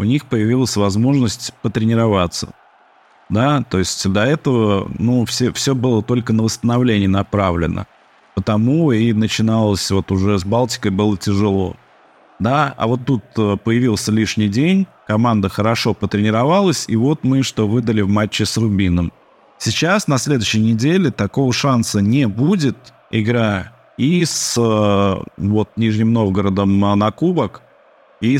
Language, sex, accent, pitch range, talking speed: Russian, male, native, 105-125 Hz, 130 wpm